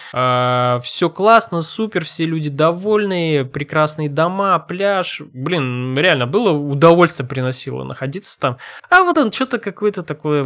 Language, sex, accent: Russian, male, native